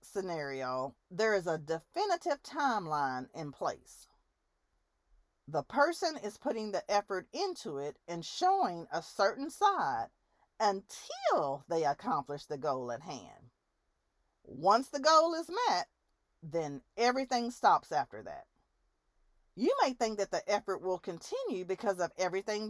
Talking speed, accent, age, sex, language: 130 wpm, American, 40-59, female, English